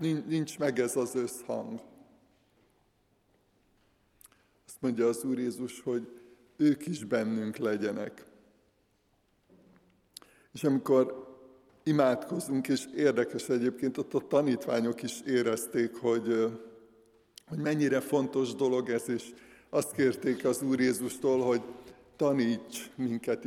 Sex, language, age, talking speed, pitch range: male, Hungarian, 50-69, 105 wpm, 120-135 Hz